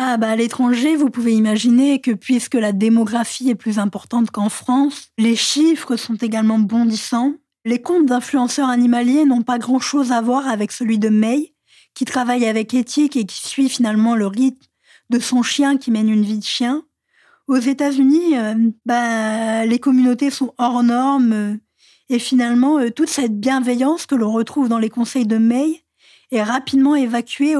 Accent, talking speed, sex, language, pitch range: French, 165 wpm, female, French, 230-270 Hz